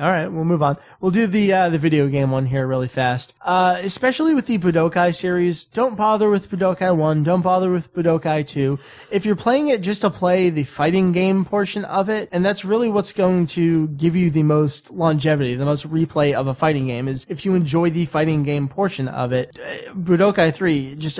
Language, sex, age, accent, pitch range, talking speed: English, male, 20-39, American, 145-185 Hz, 210 wpm